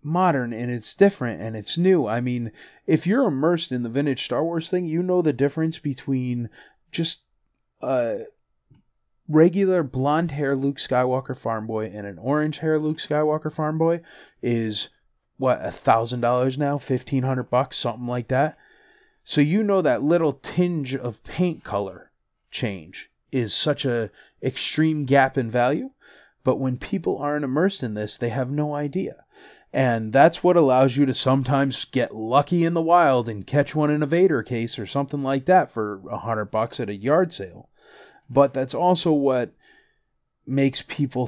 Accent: American